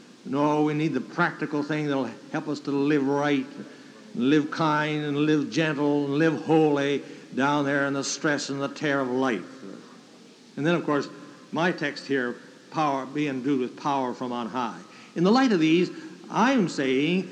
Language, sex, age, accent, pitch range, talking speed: English, male, 60-79, American, 145-190 Hz, 190 wpm